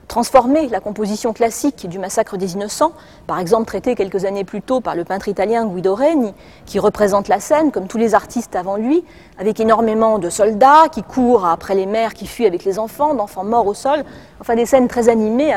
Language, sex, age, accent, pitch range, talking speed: French, female, 40-59, French, 205-265 Hz, 210 wpm